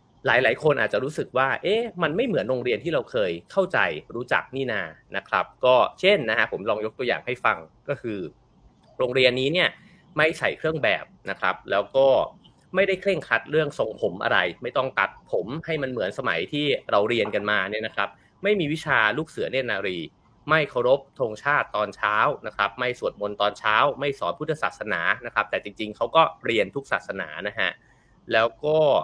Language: English